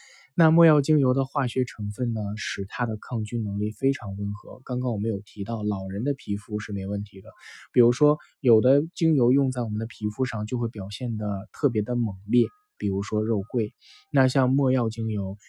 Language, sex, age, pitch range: Chinese, male, 20-39, 105-130 Hz